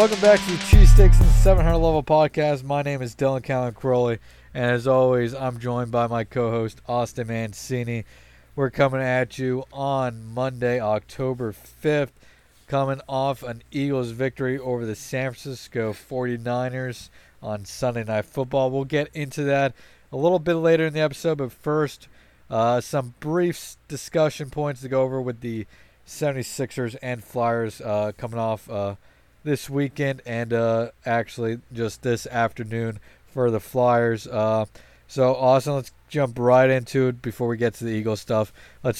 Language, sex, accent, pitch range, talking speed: English, male, American, 110-135 Hz, 160 wpm